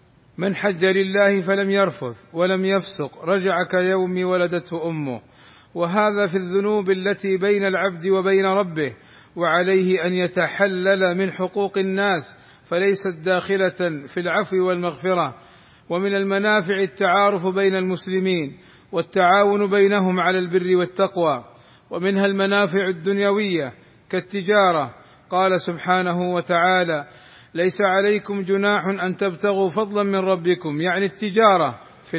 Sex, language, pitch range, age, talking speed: male, Arabic, 175-195 Hz, 40-59, 110 wpm